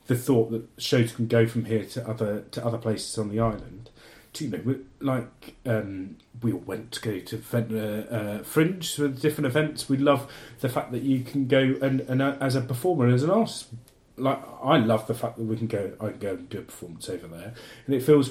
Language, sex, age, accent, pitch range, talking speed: English, male, 30-49, British, 110-135 Hz, 240 wpm